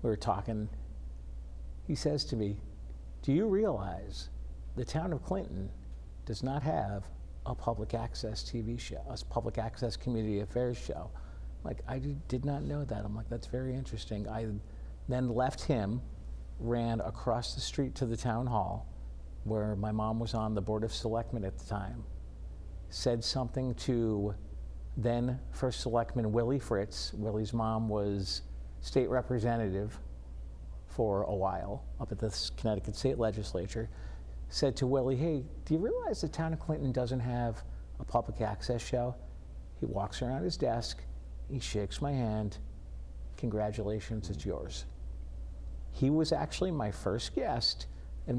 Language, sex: English, male